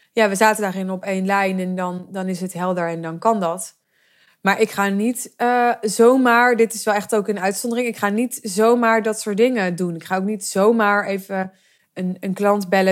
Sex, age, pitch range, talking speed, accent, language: female, 20-39, 190-225 Hz, 225 wpm, Dutch, Dutch